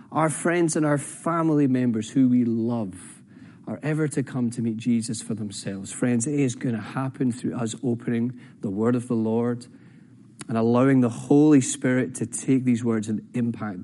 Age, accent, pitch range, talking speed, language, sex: 30-49, British, 105-135 Hz, 185 wpm, English, male